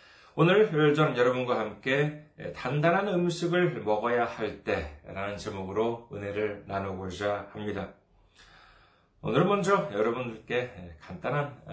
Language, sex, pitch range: Korean, male, 95-150 Hz